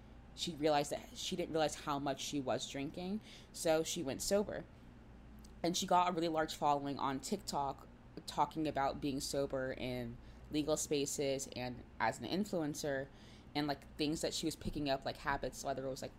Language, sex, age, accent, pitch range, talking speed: English, female, 20-39, American, 140-170 Hz, 180 wpm